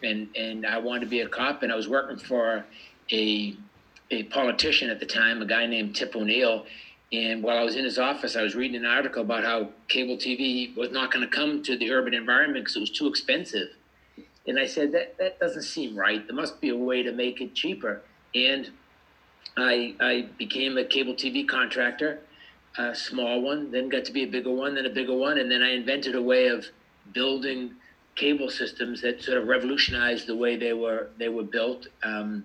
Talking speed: 215 wpm